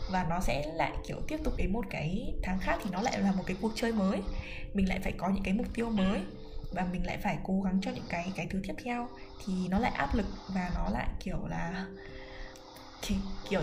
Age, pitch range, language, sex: 10-29, 185-220 Hz, Vietnamese, female